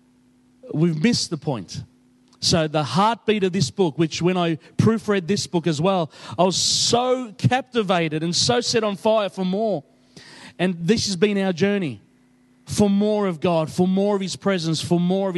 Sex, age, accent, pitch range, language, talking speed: male, 30-49, Australian, 140-185 Hz, English, 185 wpm